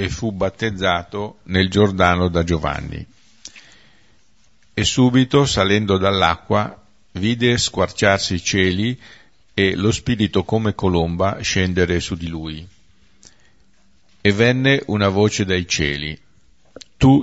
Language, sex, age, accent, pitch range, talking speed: Italian, male, 50-69, native, 90-110 Hz, 110 wpm